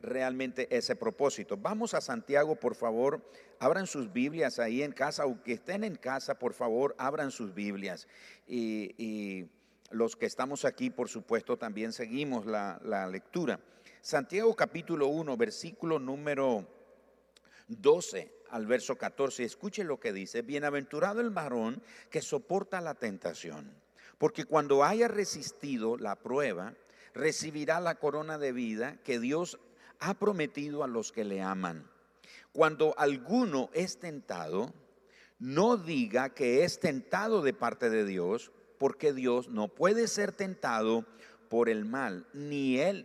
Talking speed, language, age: 140 wpm, Spanish, 50-69